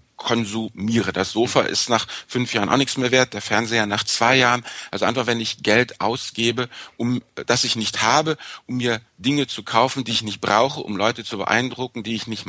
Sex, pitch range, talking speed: male, 105-125 Hz, 205 wpm